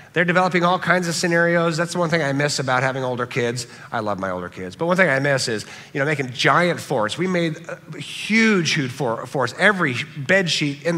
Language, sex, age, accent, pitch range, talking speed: English, male, 50-69, American, 135-175 Hz, 225 wpm